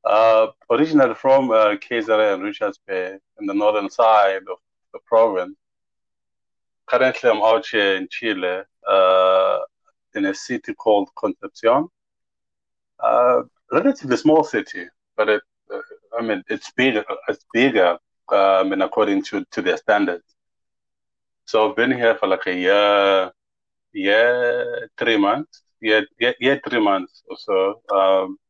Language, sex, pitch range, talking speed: English, male, 95-145 Hz, 135 wpm